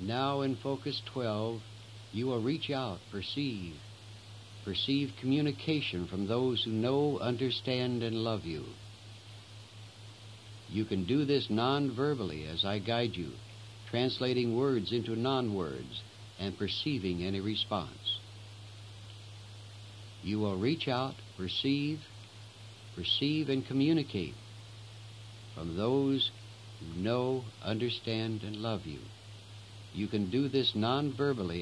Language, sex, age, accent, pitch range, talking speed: English, male, 60-79, American, 105-120 Hz, 110 wpm